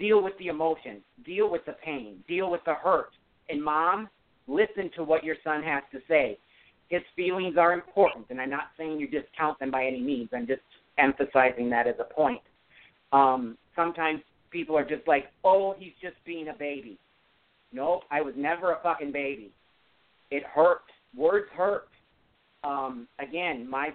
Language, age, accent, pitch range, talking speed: English, 50-69, American, 140-170 Hz, 175 wpm